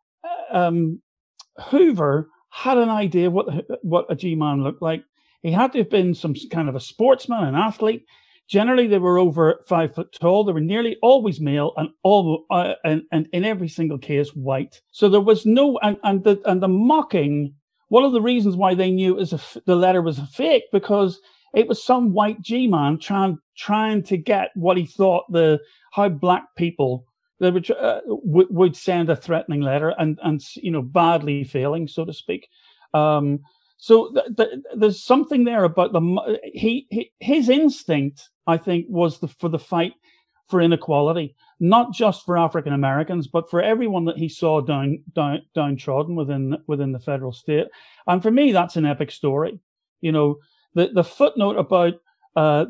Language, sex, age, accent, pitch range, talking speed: English, male, 50-69, British, 155-210 Hz, 180 wpm